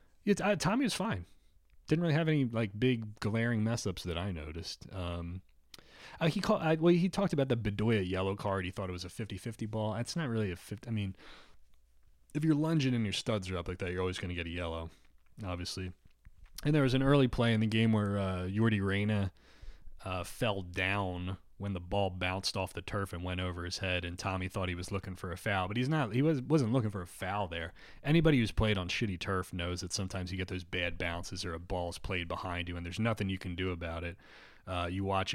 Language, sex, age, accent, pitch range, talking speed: English, male, 30-49, American, 90-115 Hz, 240 wpm